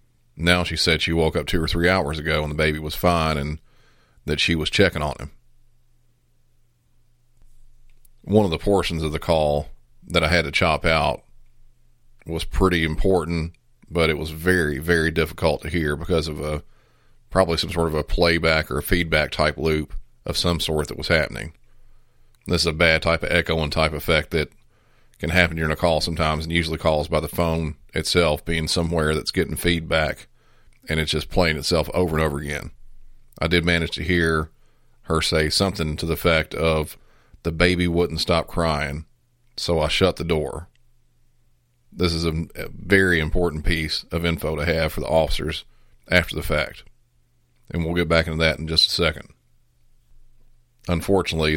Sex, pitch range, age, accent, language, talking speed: male, 80-90 Hz, 40-59, American, English, 175 wpm